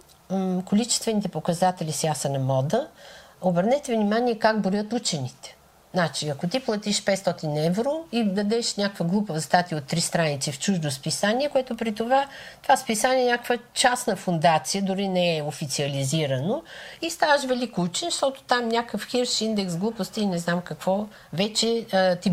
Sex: female